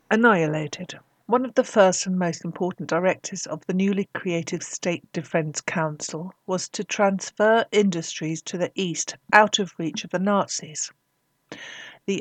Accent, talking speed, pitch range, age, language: British, 145 wpm, 170-200 Hz, 60-79, English